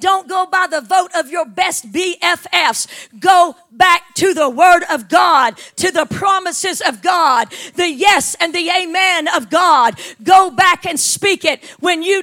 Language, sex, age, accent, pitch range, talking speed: English, female, 40-59, American, 320-375 Hz, 170 wpm